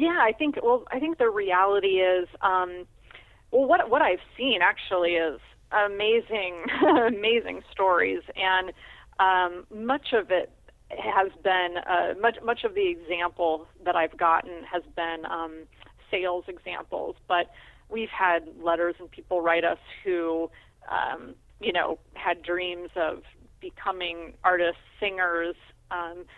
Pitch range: 170-210 Hz